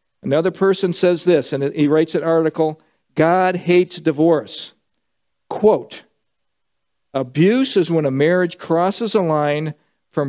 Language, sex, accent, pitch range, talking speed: English, male, American, 155-200 Hz, 130 wpm